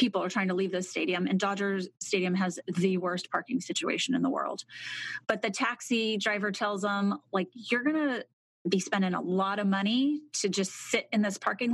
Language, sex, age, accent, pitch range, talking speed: English, female, 30-49, American, 190-235 Hz, 205 wpm